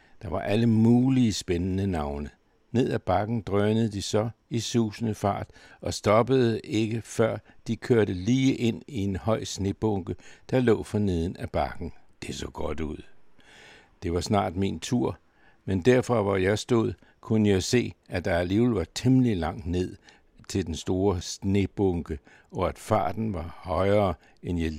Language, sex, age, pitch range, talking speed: Danish, male, 60-79, 90-110 Hz, 160 wpm